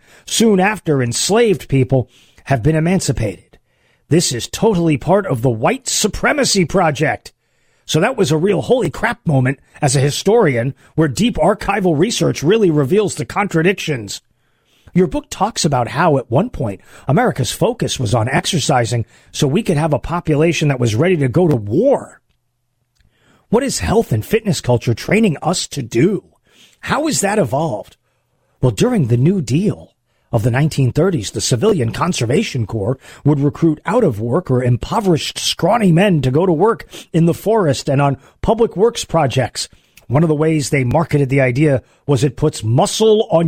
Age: 40-59